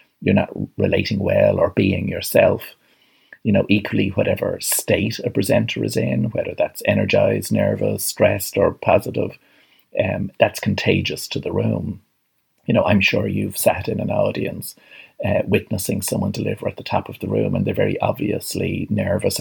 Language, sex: English, male